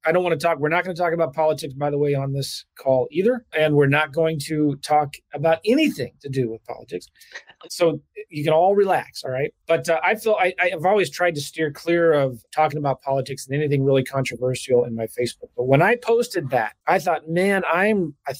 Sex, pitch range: male, 135-175 Hz